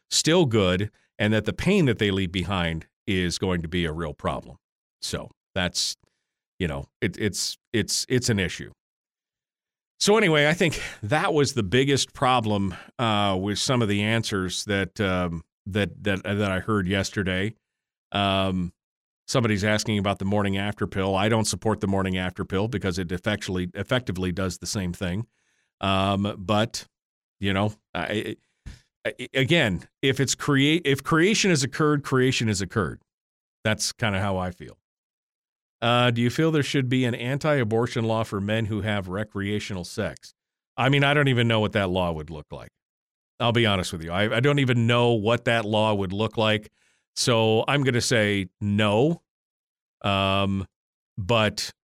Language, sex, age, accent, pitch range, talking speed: English, male, 40-59, American, 95-125 Hz, 170 wpm